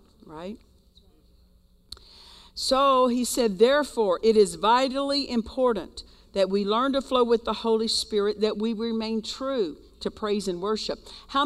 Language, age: English, 50-69